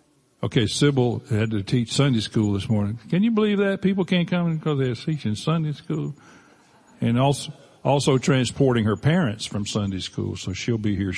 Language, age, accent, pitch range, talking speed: English, 50-69, American, 110-145 Hz, 185 wpm